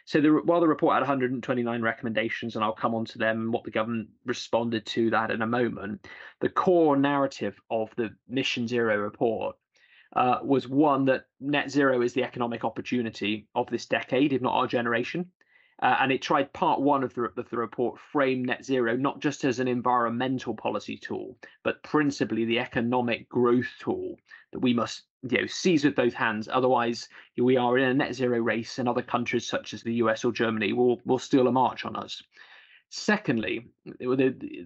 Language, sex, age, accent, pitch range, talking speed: English, male, 20-39, British, 115-135 Hz, 190 wpm